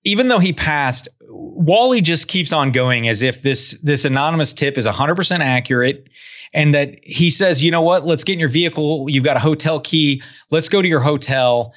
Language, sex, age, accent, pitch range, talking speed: English, male, 30-49, American, 125-165 Hz, 210 wpm